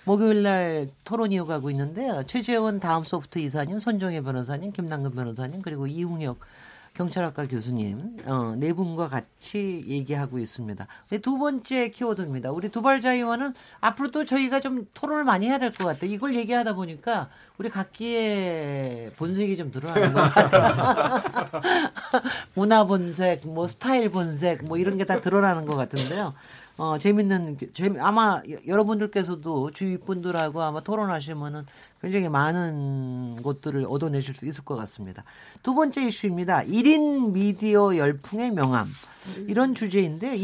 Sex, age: male, 40-59